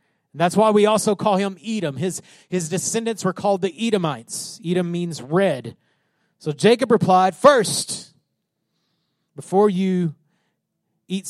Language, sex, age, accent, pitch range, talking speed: English, male, 30-49, American, 150-200 Hz, 125 wpm